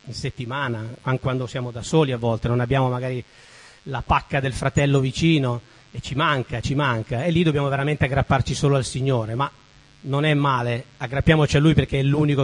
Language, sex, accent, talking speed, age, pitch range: Italian, male, native, 190 wpm, 40-59, 120-160 Hz